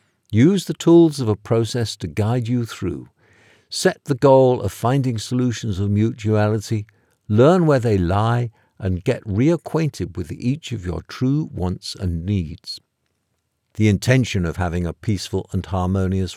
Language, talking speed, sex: English, 150 wpm, male